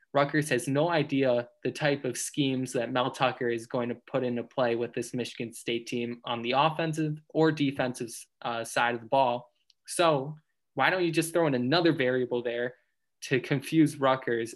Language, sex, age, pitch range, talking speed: English, male, 10-29, 125-155 Hz, 185 wpm